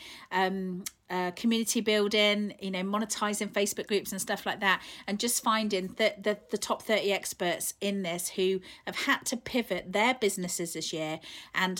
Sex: female